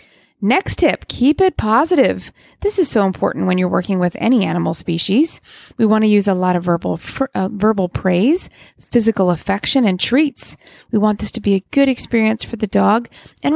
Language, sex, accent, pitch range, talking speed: English, female, American, 195-265 Hz, 185 wpm